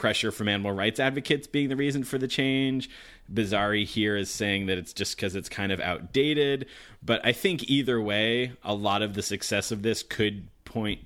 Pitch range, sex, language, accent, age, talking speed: 100-120 Hz, male, English, American, 30-49, 200 wpm